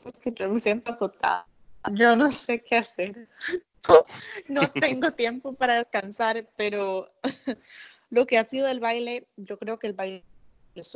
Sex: female